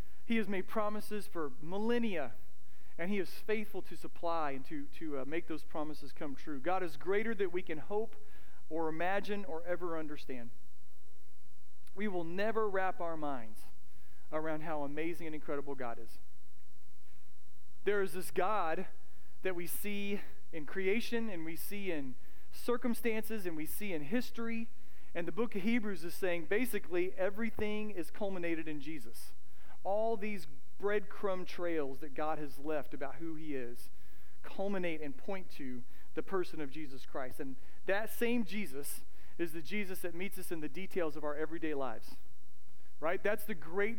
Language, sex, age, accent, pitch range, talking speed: English, male, 40-59, American, 145-200 Hz, 165 wpm